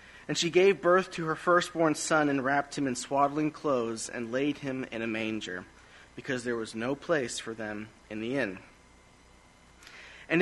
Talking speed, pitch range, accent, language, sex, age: 180 wpm, 125-160 Hz, American, English, male, 30-49